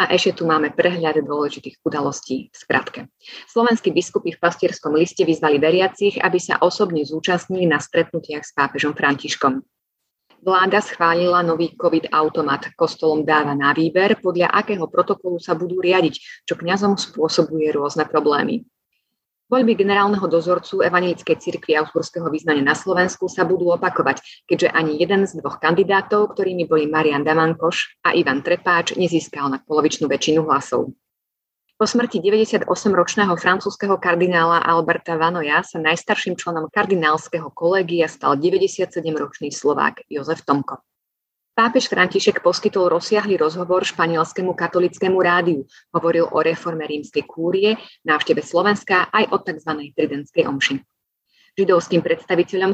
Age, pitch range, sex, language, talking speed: 30-49, 155-190 Hz, female, Slovak, 130 wpm